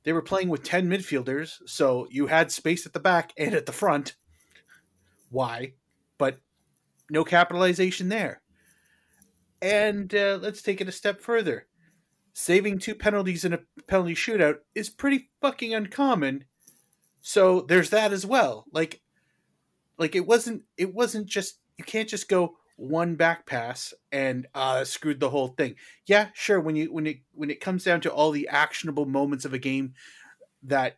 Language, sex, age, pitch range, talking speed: English, male, 30-49, 140-190 Hz, 165 wpm